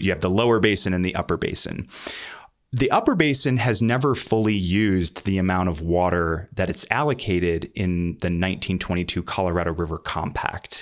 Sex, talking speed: male, 160 wpm